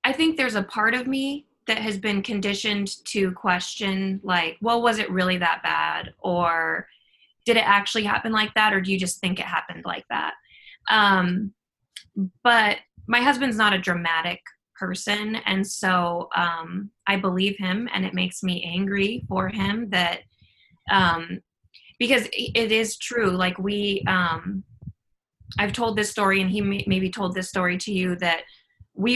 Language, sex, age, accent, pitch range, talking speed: English, female, 20-39, American, 180-210 Hz, 165 wpm